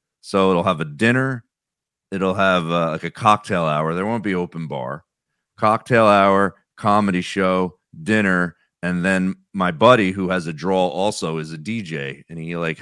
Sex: male